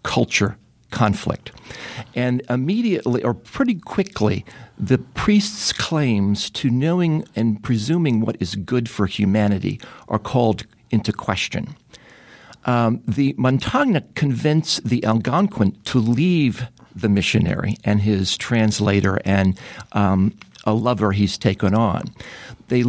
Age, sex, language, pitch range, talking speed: 50-69, male, English, 105-135 Hz, 115 wpm